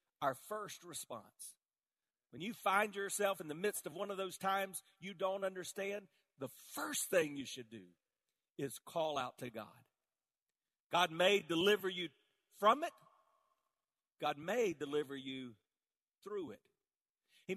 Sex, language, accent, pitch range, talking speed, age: male, English, American, 185-275 Hz, 145 wpm, 40-59